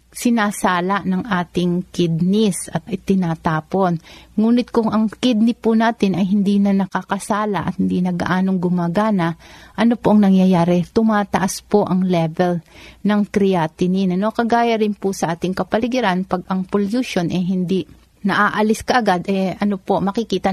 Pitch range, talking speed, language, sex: 180-205 Hz, 145 wpm, Filipino, female